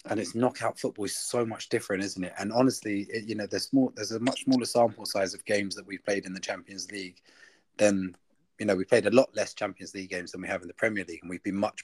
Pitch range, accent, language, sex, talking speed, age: 95-115 Hz, British, English, male, 275 wpm, 20-39